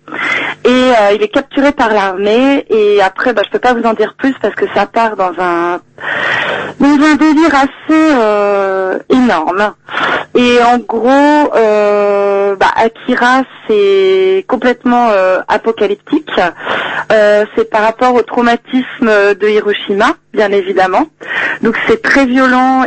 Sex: female